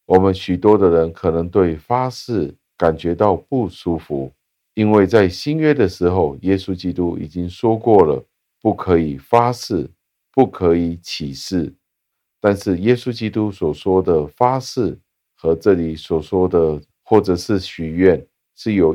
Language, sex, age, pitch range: Chinese, male, 50-69, 80-105 Hz